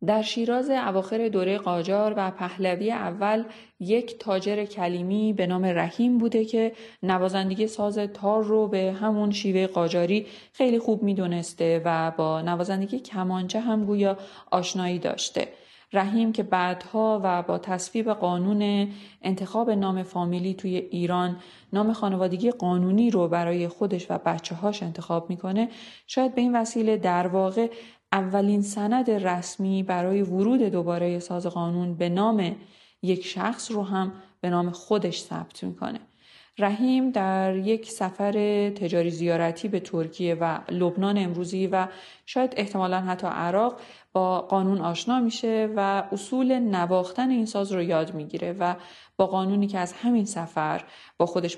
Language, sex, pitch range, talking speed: Persian, female, 180-215 Hz, 140 wpm